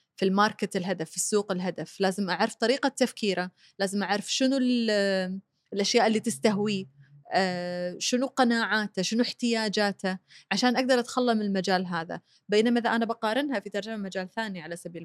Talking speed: 150 wpm